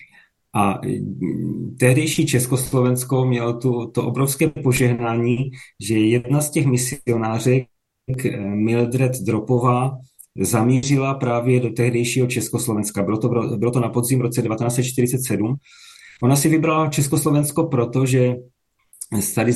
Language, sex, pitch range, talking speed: Czech, male, 120-130 Hz, 105 wpm